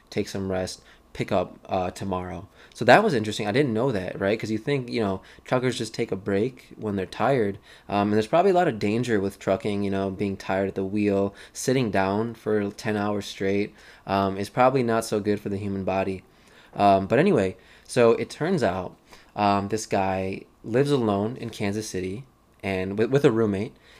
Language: English